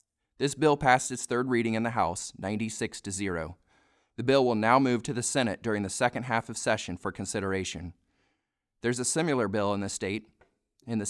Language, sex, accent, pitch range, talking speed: English, male, American, 100-130 Hz, 200 wpm